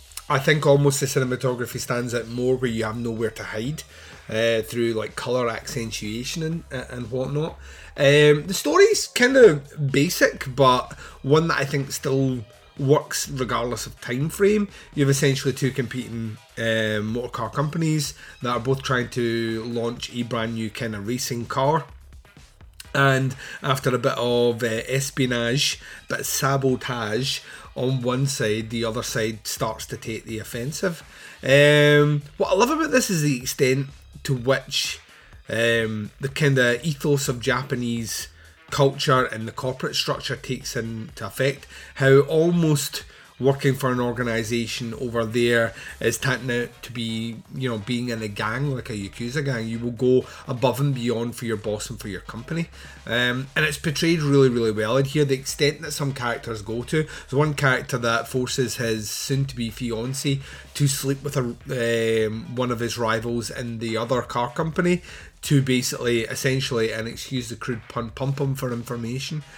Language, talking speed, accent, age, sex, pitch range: English, 165 wpm, British, 30-49, male, 115-140 Hz